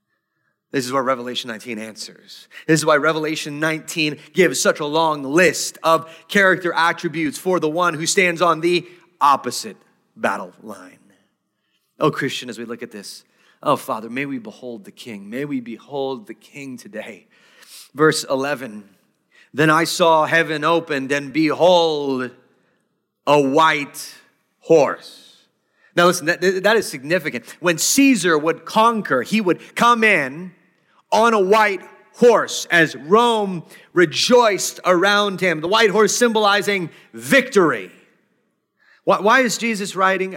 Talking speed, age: 140 wpm, 30-49